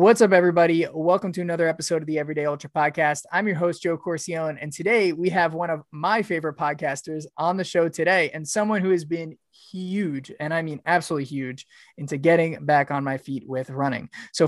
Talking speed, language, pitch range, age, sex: 205 wpm, English, 140-170 Hz, 20-39, male